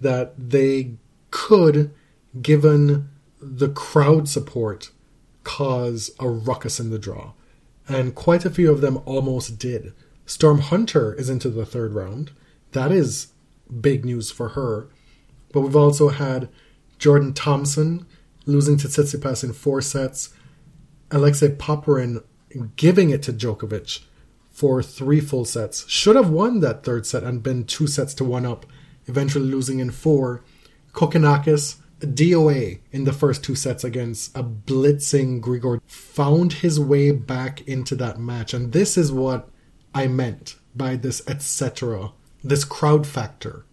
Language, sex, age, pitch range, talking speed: English, male, 30-49, 125-150 Hz, 145 wpm